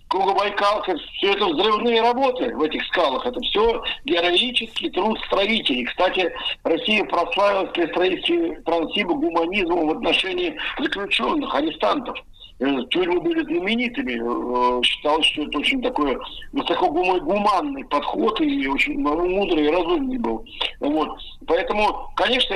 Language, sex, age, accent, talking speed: Russian, male, 50-69, native, 120 wpm